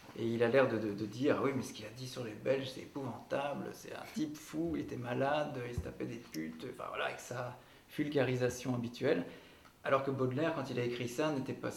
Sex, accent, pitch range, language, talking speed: male, French, 115-140 Hz, French, 255 wpm